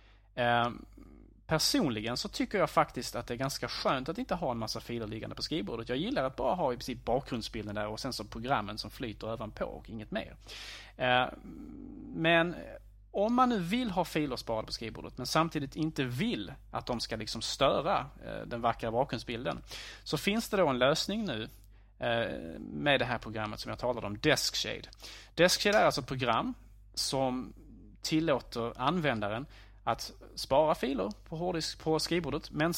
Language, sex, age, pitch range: Swedish, male, 30-49, 110-150 Hz